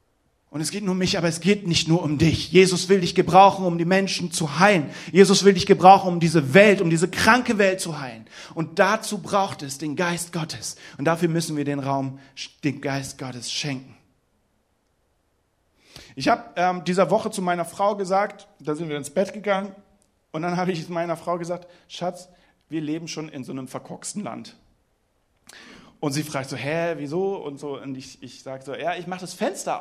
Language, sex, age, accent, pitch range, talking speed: German, male, 40-59, German, 135-185 Hz, 200 wpm